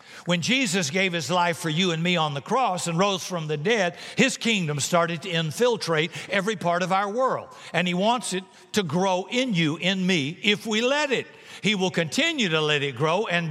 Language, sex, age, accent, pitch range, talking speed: English, male, 60-79, American, 165-200 Hz, 220 wpm